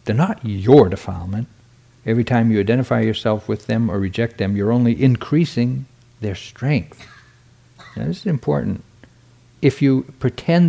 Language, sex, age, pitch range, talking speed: English, male, 60-79, 110-135 Hz, 145 wpm